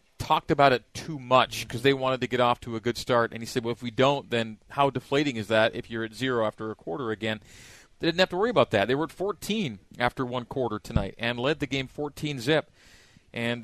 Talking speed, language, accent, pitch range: 250 wpm, English, American, 115-145 Hz